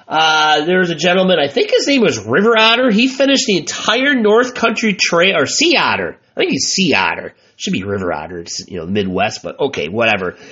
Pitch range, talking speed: 155-220 Hz, 215 wpm